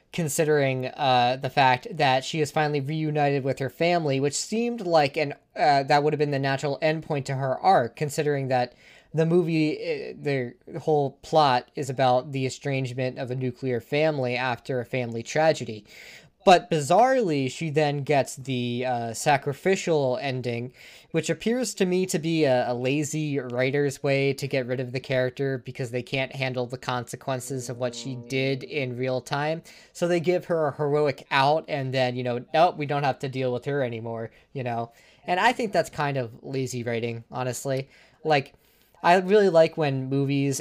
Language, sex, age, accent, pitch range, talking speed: English, male, 20-39, American, 130-155 Hz, 180 wpm